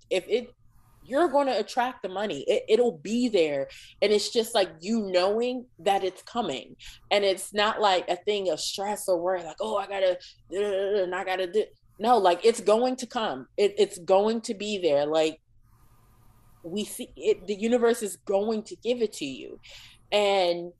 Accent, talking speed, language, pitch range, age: American, 190 wpm, English, 165-215 Hz, 20-39